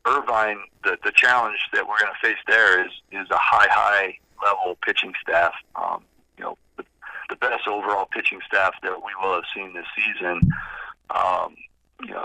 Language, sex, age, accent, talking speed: English, male, 40-59, American, 175 wpm